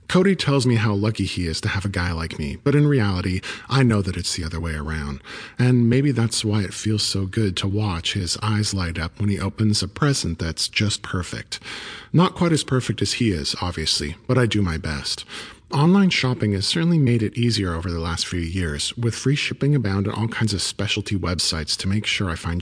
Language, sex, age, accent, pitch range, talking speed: English, male, 40-59, American, 90-120 Hz, 230 wpm